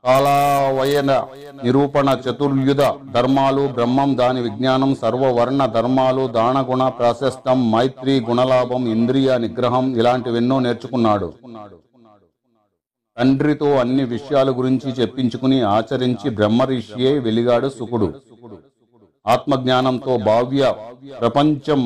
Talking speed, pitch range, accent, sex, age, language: 70 wpm, 120-140 Hz, native, male, 40-59, Telugu